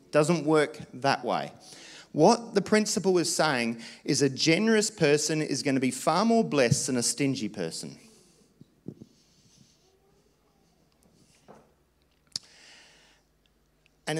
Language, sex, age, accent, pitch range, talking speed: English, male, 40-59, Australian, 130-185 Hz, 105 wpm